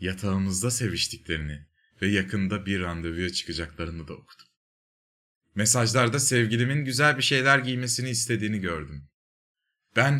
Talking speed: 105 wpm